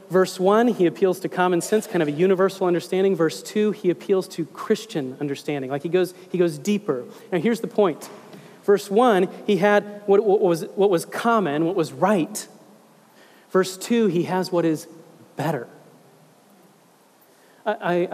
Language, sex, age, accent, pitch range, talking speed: English, male, 30-49, American, 165-215 Hz, 165 wpm